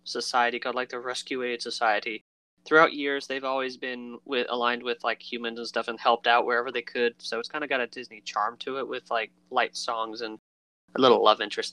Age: 20-39